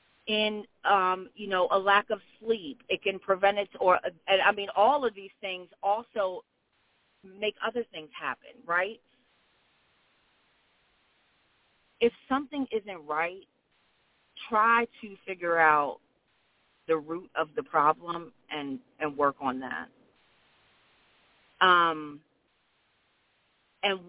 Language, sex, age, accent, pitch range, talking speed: English, female, 40-59, American, 160-220 Hz, 110 wpm